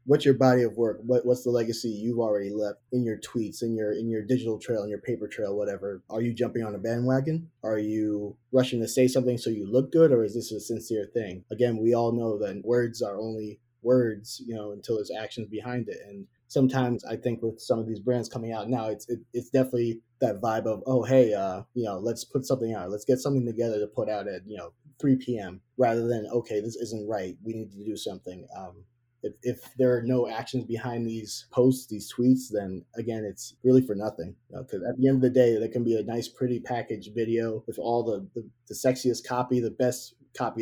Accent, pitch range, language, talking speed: American, 105-125 Hz, English, 235 wpm